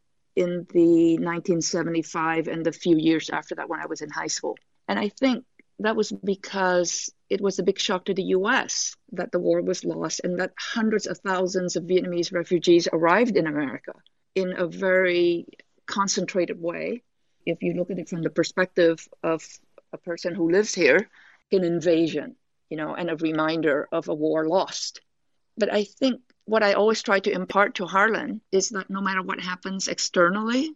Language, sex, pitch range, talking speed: English, female, 170-200 Hz, 180 wpm